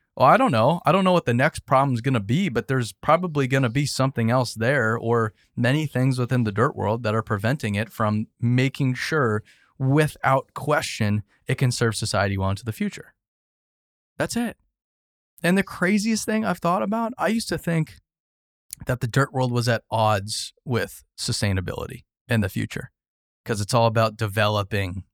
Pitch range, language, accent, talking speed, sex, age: 105-135 Hz, English, American, 185 wpm, male, 20-39